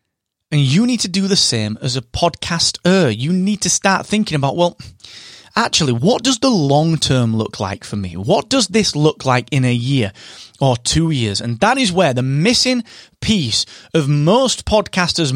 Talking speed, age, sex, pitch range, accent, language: 190 wpm, 30-49, male, 120-185 Hz, British, English